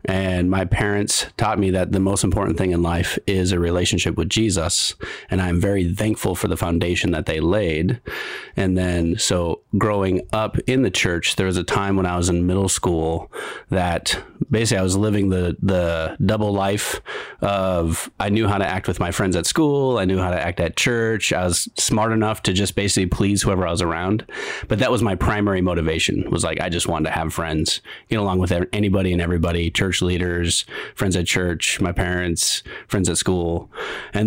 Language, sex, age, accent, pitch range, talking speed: English, male, 30-49, American, 85-105 Hz, 205 wpm